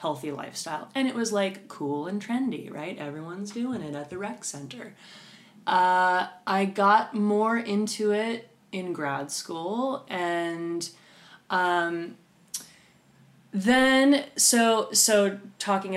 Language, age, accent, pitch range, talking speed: English, 20-39, American, 150-200 Hz, 120 wpm